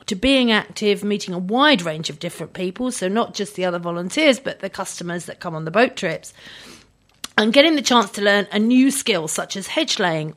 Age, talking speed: 40-59, 220 wpm